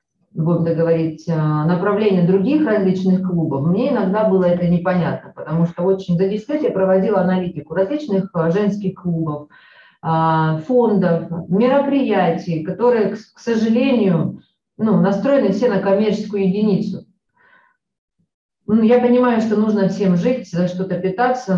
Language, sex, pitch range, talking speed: Russian, female, 170-210 Hz, 120 wpm